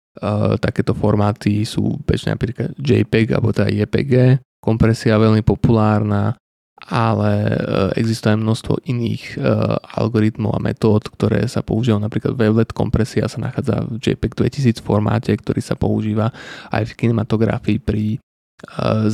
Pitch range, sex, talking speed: 110-120 Hz, male, 135 wpm